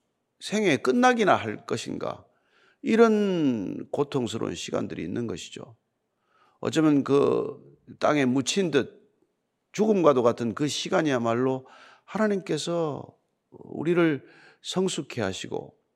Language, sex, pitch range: Korean, male, 125-195 Hz